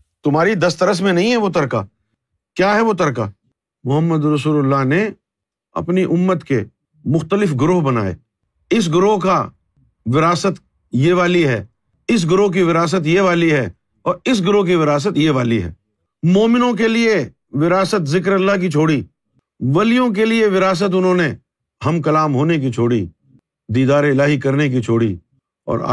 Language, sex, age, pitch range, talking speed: Urdu, male, 50-69, 135-200 Hz, 155 wpm